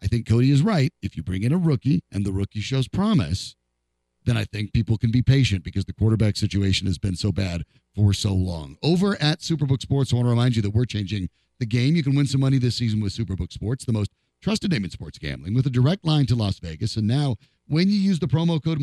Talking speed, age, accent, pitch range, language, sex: 255 wpm, 40-59, American, 105-150 Hz, English, male